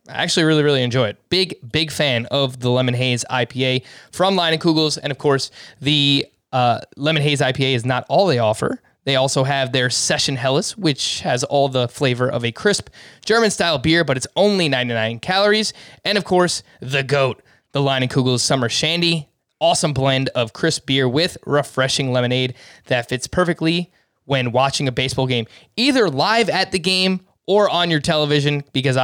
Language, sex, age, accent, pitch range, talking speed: English, male, 20-39, American, 130-170 Hz, 185 wpm